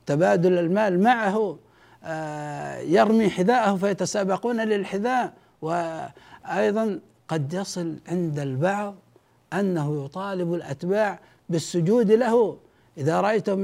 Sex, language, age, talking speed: male, Arabic, 60-79, 85 wpm